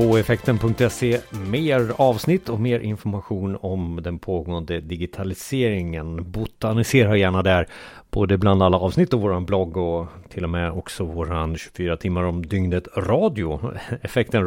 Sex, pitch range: male, 90-120 Hz